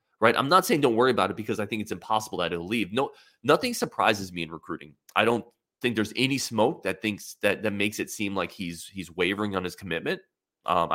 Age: 20-39